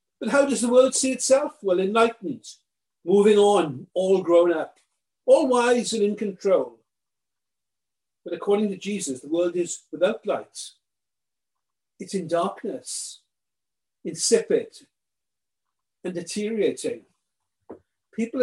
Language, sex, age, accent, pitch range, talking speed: English, male, 50-69, British, 190-250 Hz, 115 wpm